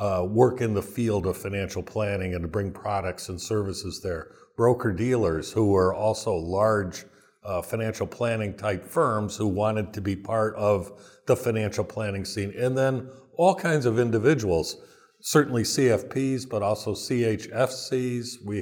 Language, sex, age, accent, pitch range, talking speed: English, male, 50-69, American, 100-125 Hz, 155 wpm